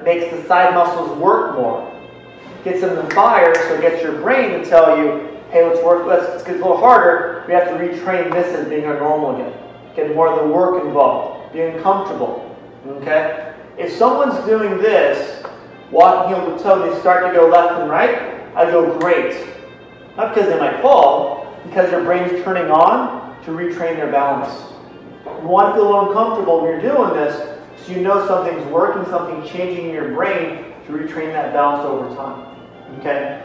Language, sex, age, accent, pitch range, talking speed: English, male, 30-49, American, 155-190 Hz, 190 wpm